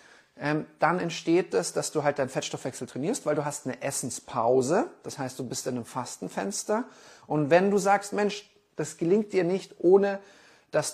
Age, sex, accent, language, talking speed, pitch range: 30-49, male, German, German, 180 wpm, 145-180 Hz